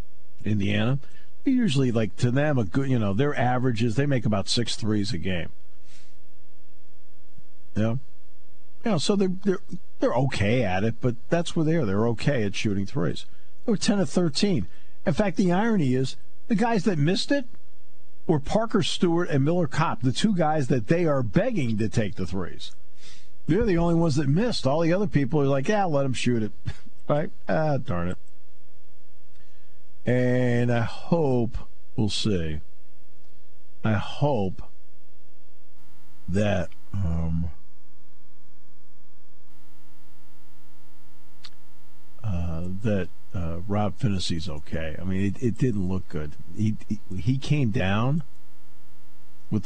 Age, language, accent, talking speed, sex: 50-69, English, American, 145 wpm, male